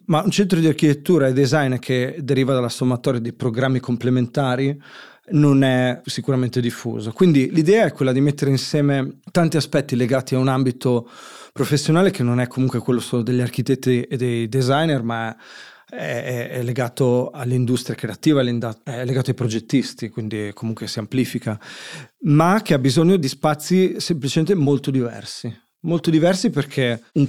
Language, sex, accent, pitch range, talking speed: Italian, male, native, 120-145 Hz, 155 wpm